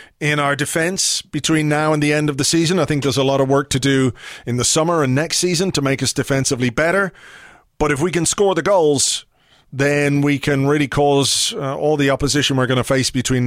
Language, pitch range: English, 130-165 Hz